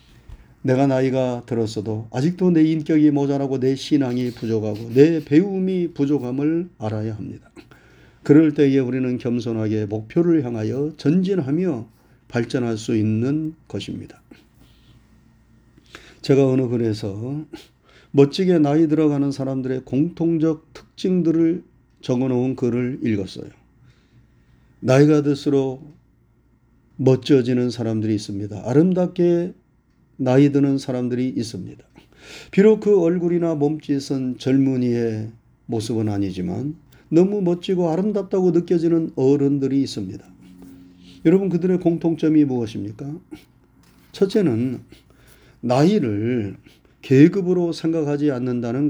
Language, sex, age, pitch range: Korean, male, 40-59, 120-155 Hz